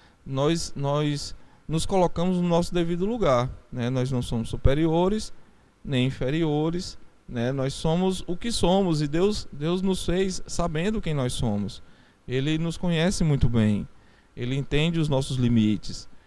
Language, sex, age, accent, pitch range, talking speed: Portuguese, male, 20-39, Brazilian, 130-160 Hz, 150 wpm